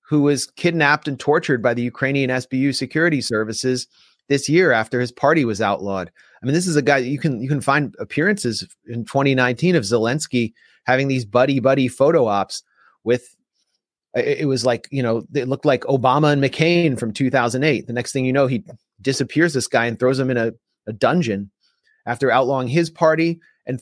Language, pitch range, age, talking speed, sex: English, 110-140 Hz, 30-49, 190 wpm, male